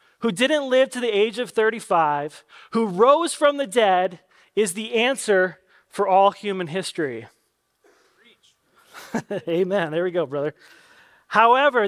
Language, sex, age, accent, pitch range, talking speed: English, male, 30-49, American, 185-245 Hz, 130 wpm